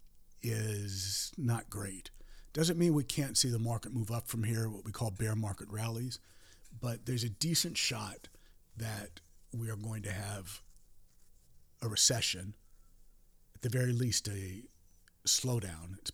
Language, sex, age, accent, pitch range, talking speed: English, male, 50-69, American, 100-125 Hz, 150 wpm